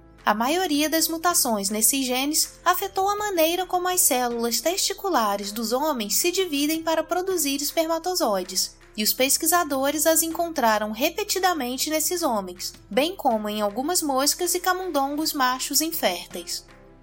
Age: 20-39